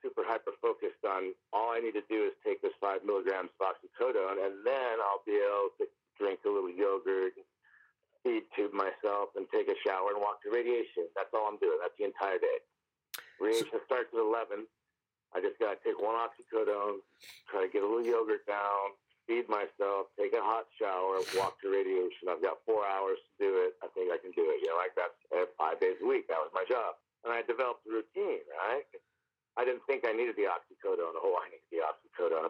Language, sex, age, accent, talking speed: English, male, 50-69, American, 210 wpm